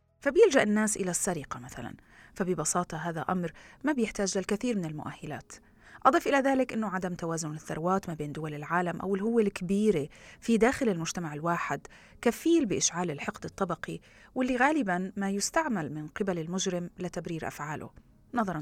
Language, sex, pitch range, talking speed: Arabic, female, 165-215 Hz, 145 wpm